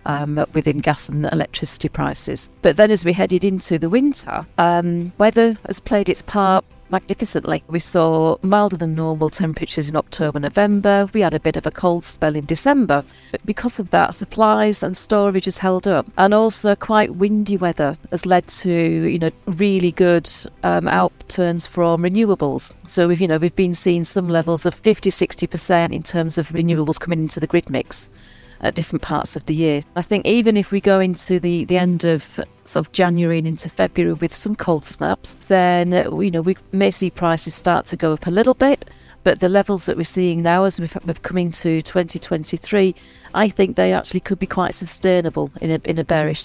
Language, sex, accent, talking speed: English, female, British, 200 wpm